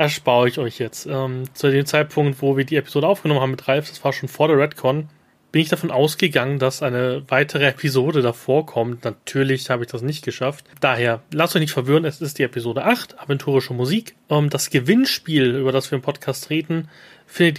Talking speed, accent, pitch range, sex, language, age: 205 wpm, German, 130-160 Hz, male, German, 30-49